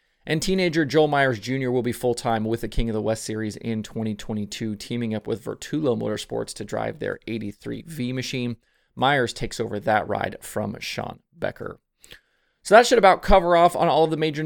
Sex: male